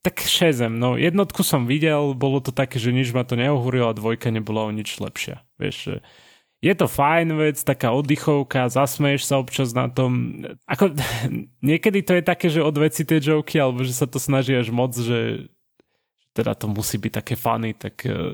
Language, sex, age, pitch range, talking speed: Slovak, male, 20-39, 120-150 Hz, 190 wpm